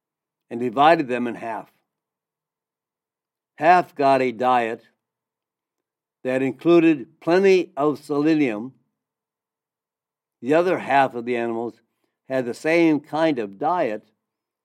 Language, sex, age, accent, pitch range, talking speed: English, male, 60-79, American, 125-160 Hz, 105 wpm